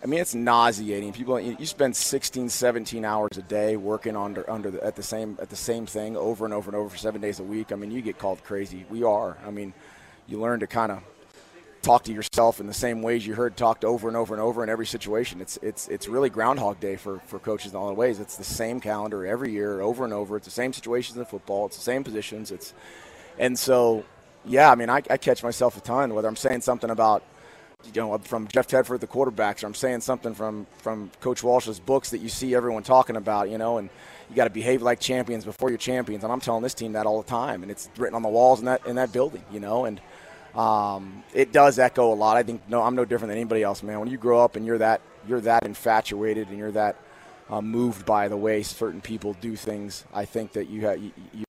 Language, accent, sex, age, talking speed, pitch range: English, American, male, 30-49, 250 wpm, 105-125 Hz